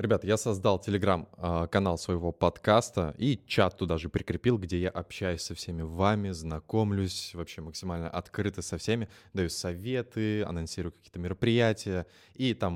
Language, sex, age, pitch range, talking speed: Russian, male, 20-39, 85-105 Hz, 145 wpm